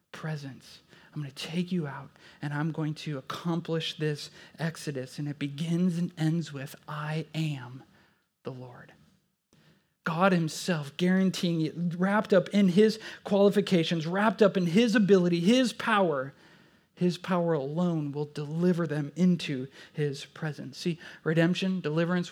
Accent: American